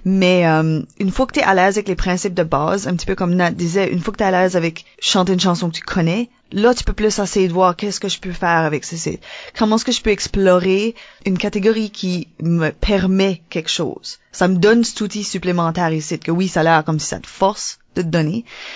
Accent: Canadian